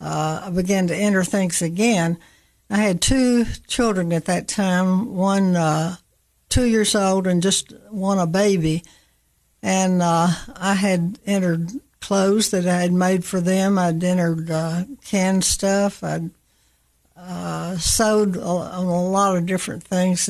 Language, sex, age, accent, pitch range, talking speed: English, female, 60-79, American, 170-195 Hz, 150 wpm